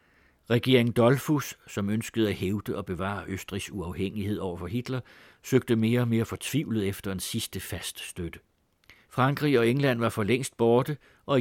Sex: male